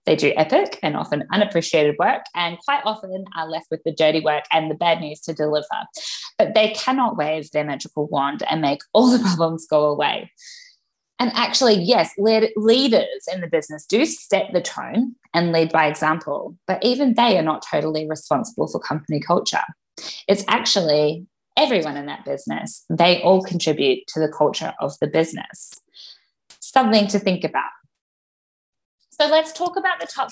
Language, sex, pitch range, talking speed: English, female, 160-215 Hz, 170 wpm